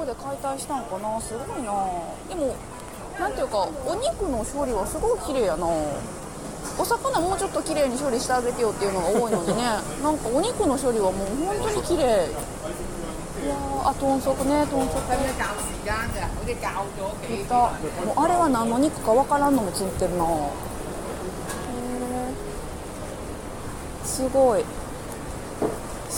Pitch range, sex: 210-285 Hz, female